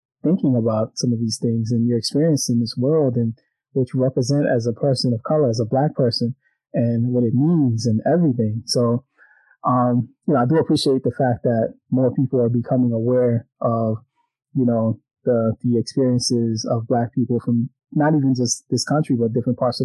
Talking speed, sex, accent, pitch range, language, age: 195 wpm, male, American, 115-135 Hz, English, 20-39